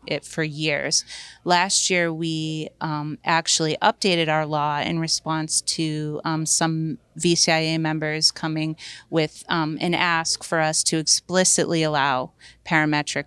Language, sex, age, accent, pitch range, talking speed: English, female, 30-49, American, 155-175 Hz, 130 wpm